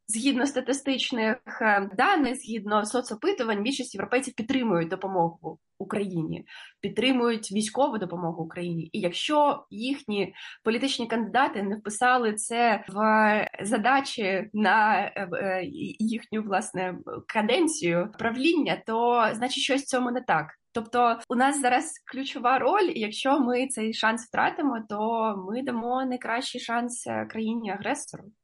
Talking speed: 115 wpm